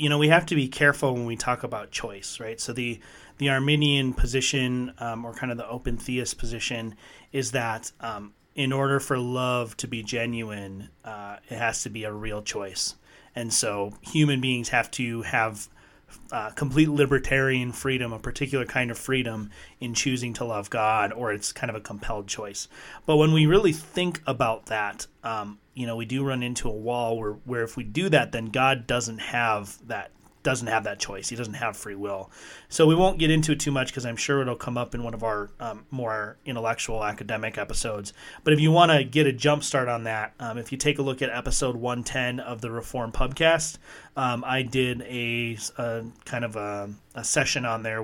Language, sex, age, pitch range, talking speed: English, male, 30-49, 110-135 Hz, 210 wpm